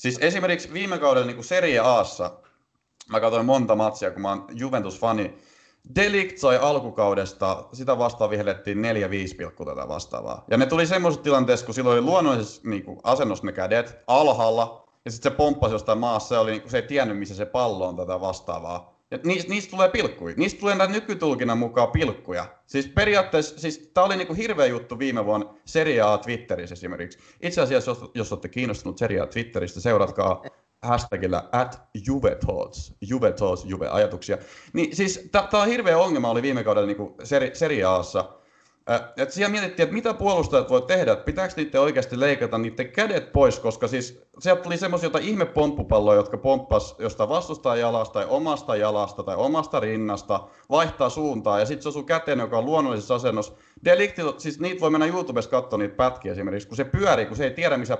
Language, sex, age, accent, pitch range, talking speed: Finnish, male, 30-49, native, 105-170 Hz, 170 wpm